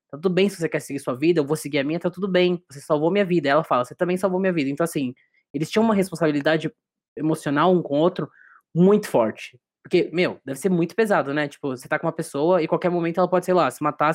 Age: 20-39